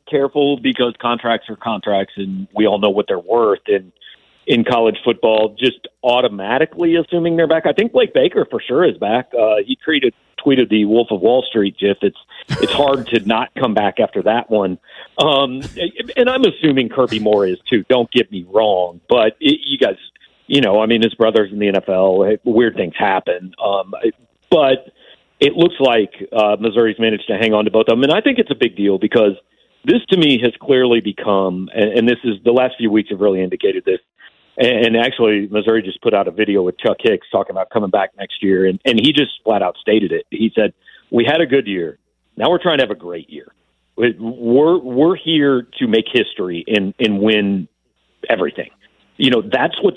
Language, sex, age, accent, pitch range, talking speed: English, male, 40-59, American, 105-145 Hz, 205 wpm